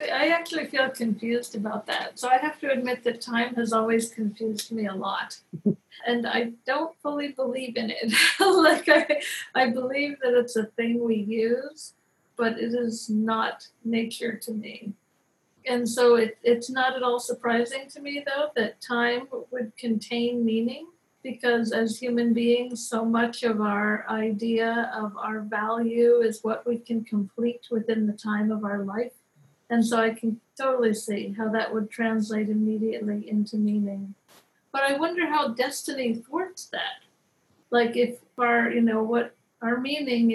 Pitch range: 220-245 Hz